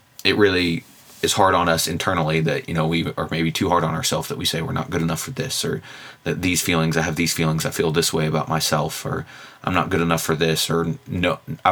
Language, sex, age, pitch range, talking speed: English, male, 20-39, 80-85 Hz, 250 wpm